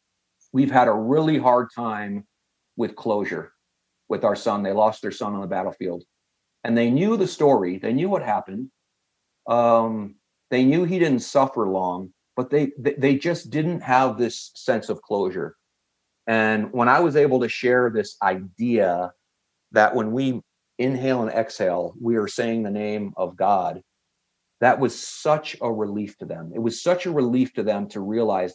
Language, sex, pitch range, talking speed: English, male, 100-130 Hz, 170 wpm